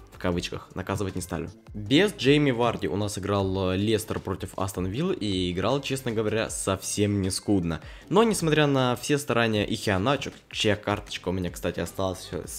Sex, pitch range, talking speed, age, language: male, 95-120 Hz, 160 wpm, 20-39, Russian